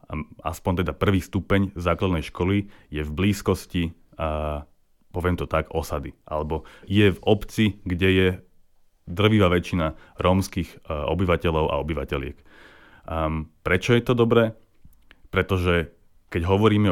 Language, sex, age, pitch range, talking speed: Slovak, male, 30-49, 80-100 Hz, 120 wpm